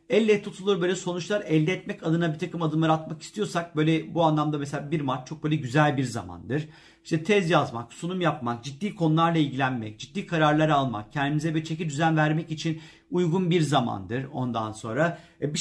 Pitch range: 135-175 Hz